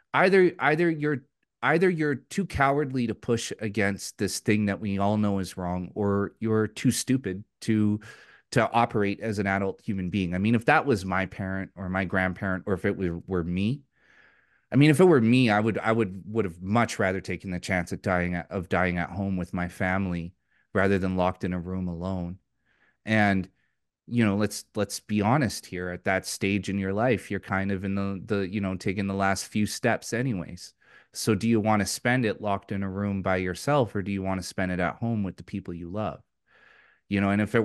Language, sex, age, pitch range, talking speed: English, male, 30-49, 95-115 Hz, 225 wpm